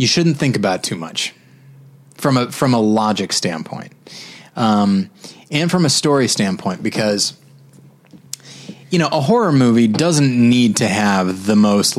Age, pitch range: 20-39, 105-140 Hz